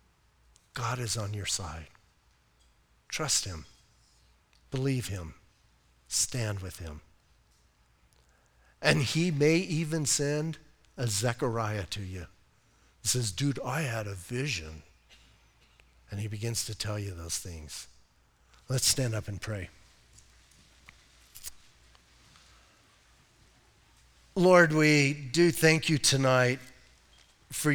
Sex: male